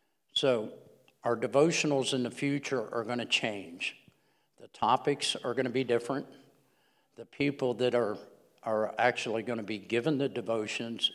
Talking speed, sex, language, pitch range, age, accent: 155 wpm, male, English, 115-135 Hz, 60-79, American